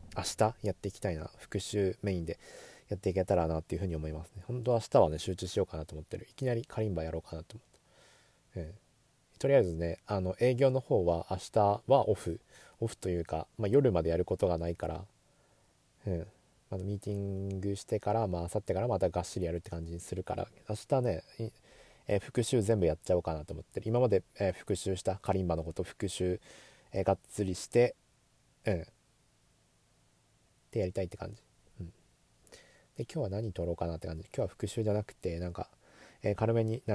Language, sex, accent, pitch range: Japanese, male, native, 90-110 Hz